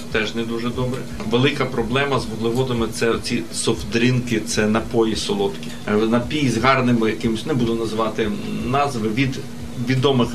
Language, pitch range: Ukrainian, 115-135 Hz